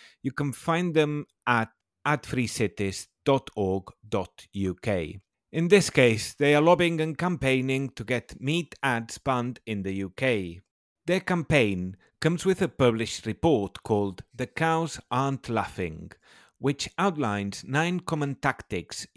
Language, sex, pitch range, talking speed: English, male, 100-150 Hz, 120 wpm